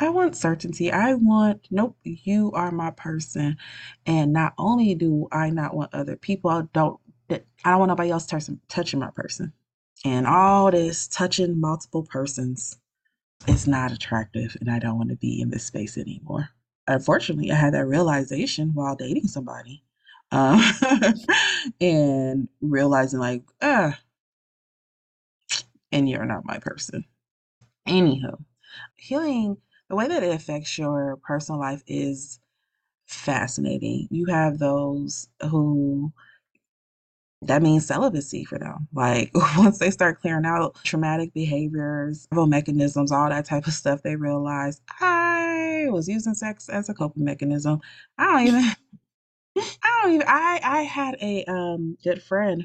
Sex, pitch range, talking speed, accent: female, 140-200 Hz, 140 wpm, American